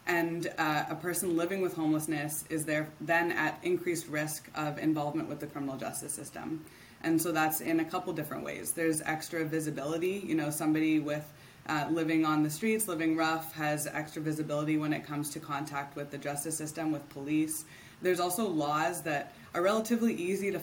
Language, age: English, 20-39